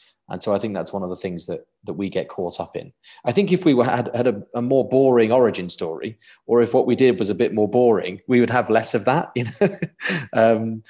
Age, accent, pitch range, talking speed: 30-49, British, 95-120 Hz, 260 wpm